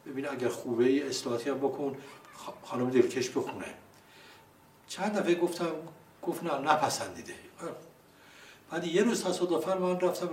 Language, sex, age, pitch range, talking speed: Persian, male, 60-79, 130-170 Hz, 115 wpm